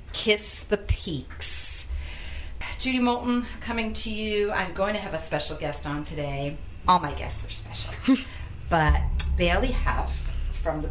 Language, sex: English, female